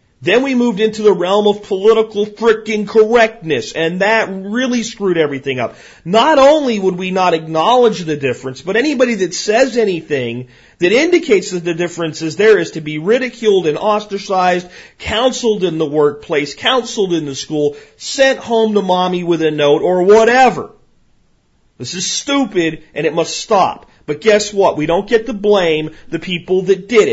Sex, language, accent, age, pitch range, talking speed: male, English, American, 40-59, 160-210 Hz, 175 wpm